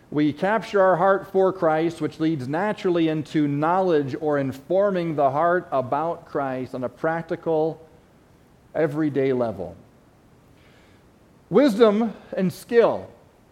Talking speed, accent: 110 wpm, American